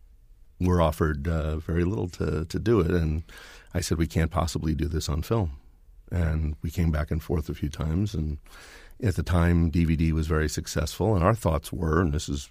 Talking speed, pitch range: 205 wpm, 80-90 Hz